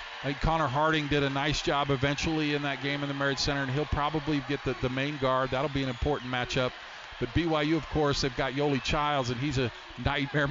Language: English